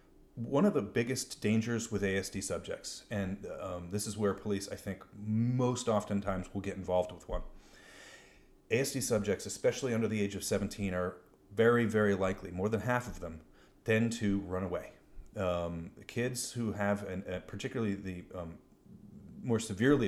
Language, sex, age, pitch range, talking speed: English, male, 30-49, 95-115 Hz, 165 wpm